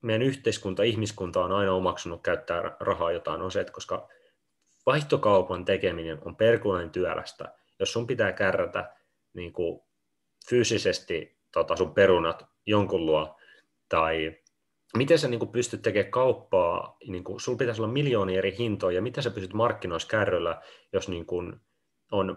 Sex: male